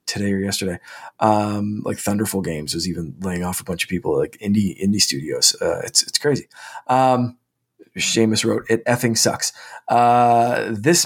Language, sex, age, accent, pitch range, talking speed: English, male, 20-39, American, 100-120 Hz, 175 wpm